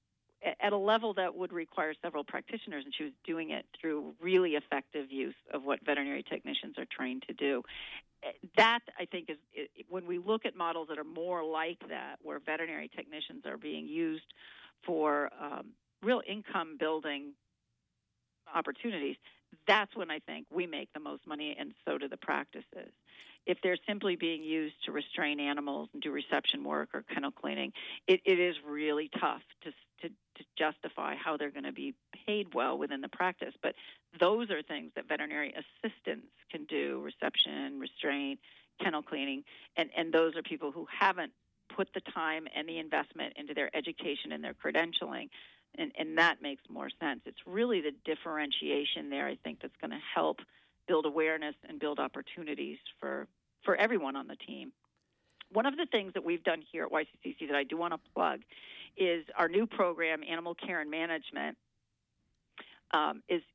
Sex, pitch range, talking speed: female, 150-195 Hz, 170 wpm